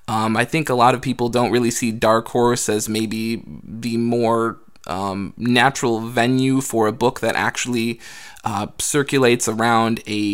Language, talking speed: English, 165 wpm